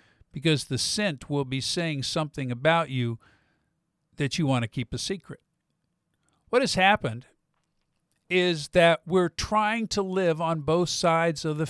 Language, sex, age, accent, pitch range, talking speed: English, male, 50-69, American, 140-180 Hz, 155 wpm